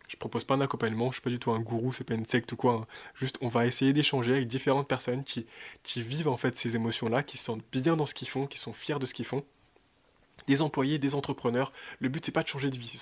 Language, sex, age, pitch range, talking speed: French, male, 20-39, 125-155 Hz, 300 wpm